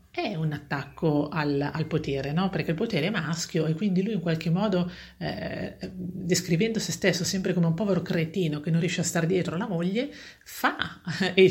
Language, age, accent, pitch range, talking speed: Italian, 40-59, native, 155-185 Hz, 195 wpm